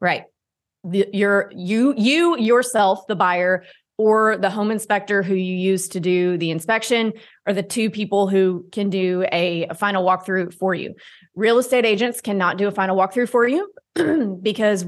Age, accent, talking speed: 20-39, American, 175 wpm